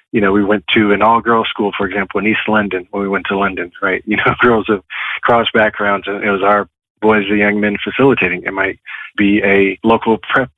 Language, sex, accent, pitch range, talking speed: English, male, American, 100-110 Hz, 225 wpm